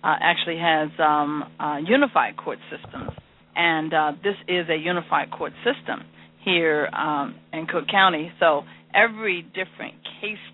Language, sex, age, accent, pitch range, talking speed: English, female, 40-59, American, 145-185 Hz, 140 wpm